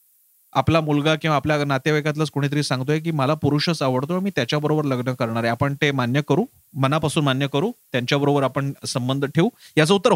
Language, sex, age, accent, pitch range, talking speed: Marathi, male, 30-49, native, 140-195 Hz, 170 wpm